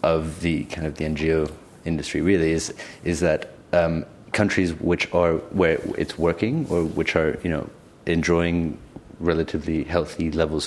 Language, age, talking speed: English, 30-49, 150 wpm